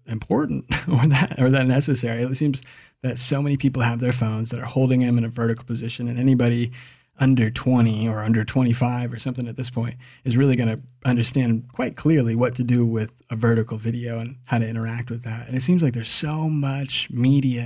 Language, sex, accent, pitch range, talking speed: English, male, American, 115-135 Hz, 215 wpm